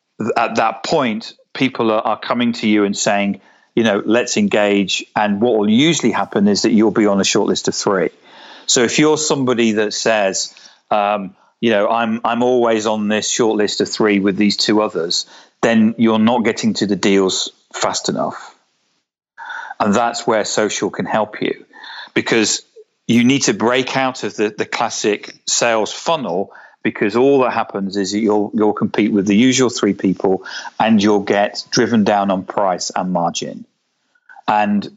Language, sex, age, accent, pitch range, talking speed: English, male, 40-59, British, 100-125 Hz, 175 wpm